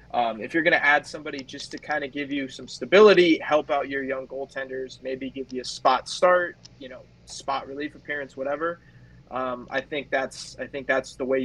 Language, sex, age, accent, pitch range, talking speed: English, male, 20-39, American, 125-150 Hz, 215 wpm